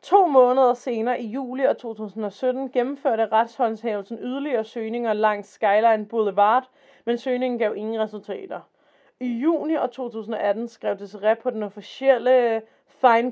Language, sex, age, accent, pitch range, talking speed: Danish, female, 30-49, native, 215-265 Hz, 120 wpm